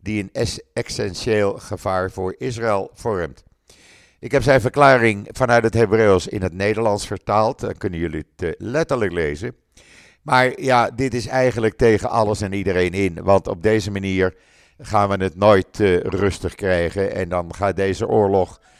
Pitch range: 95-115 Hz